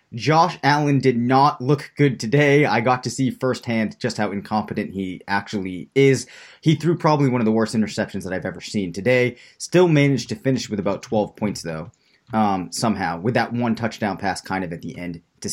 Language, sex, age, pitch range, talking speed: English, male, 30-49, 105-130 Hz, 205 wpm